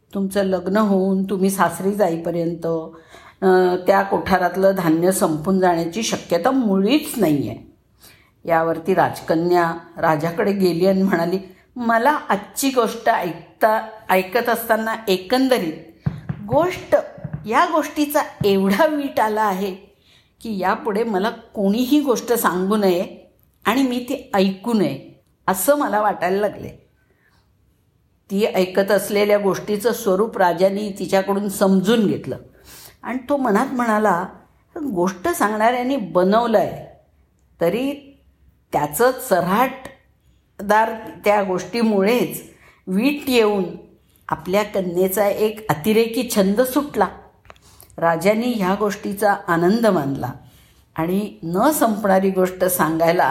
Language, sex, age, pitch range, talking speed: Marathi, female, 50-69, 180-230 Hz, 100 wpm